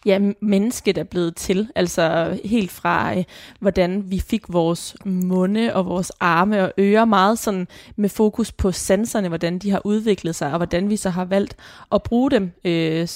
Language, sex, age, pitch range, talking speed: Danish, female, 20-39, 180-215 Hz, 180 wpm